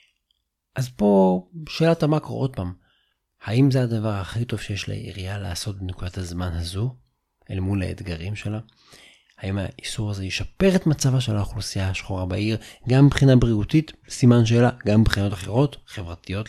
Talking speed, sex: 145 wpm, male